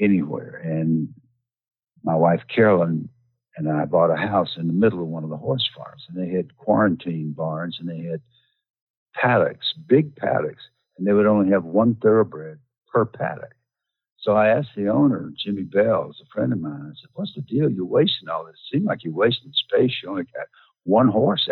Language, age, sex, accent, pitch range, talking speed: English, 60-79, male, American, 85-125 Hz, 200 wpm